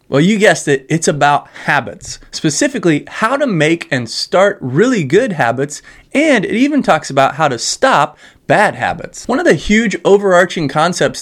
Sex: male